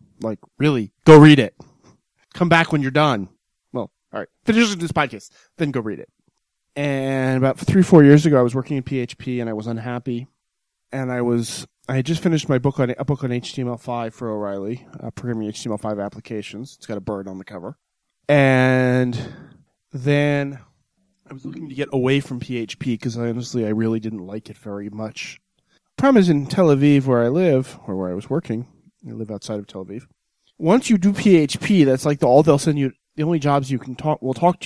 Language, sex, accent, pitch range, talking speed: English, male, American, 115-150 Hz, 210 wpm